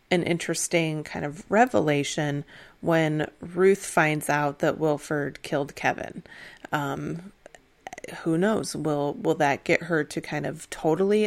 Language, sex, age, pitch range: English, female, 30-49, 150-190 Hz